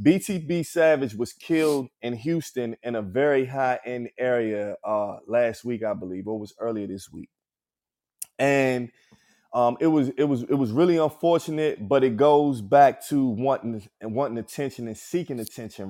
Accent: American